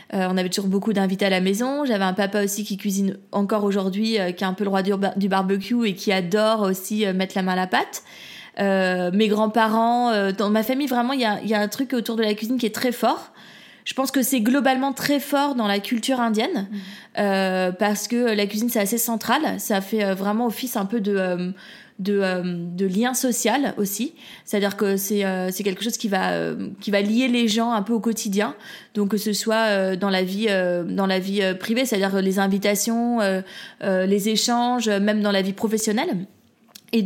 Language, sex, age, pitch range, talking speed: French, female, 20-39, 195-235 Hz, 235 wpm